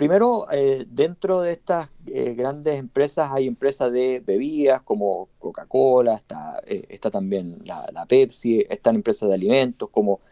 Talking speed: 150 wpm